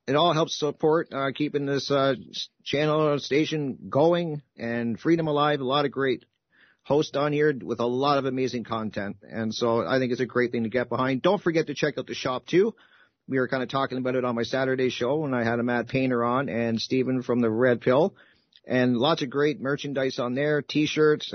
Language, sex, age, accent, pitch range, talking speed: English, male, 50-69, American, 120-145 Hz, 220 wpm